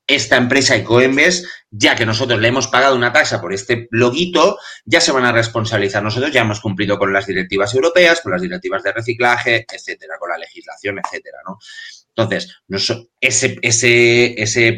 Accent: Spanish